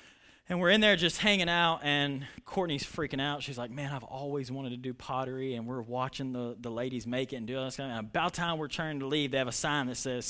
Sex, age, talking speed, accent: male, 20-39, 255 wpm, American